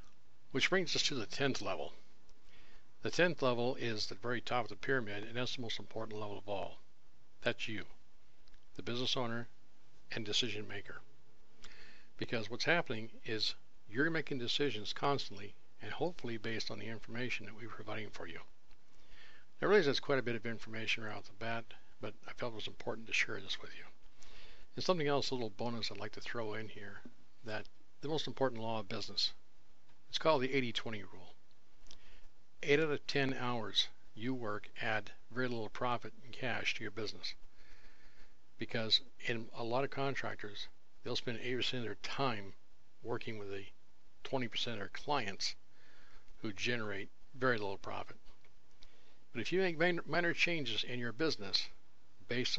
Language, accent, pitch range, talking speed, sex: English, American, 105-130 Hz, 170 wpm, male